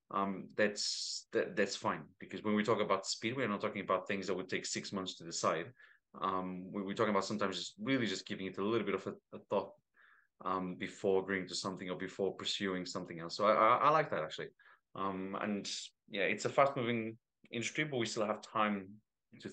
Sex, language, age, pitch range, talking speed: male, English, 30-49, 95-120 Hz, 220 wpm